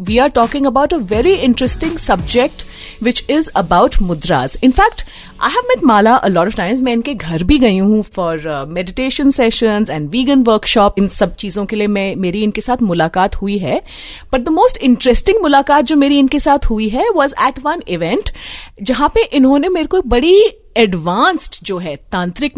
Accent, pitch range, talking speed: native, 205-295 Hz, 185 wpm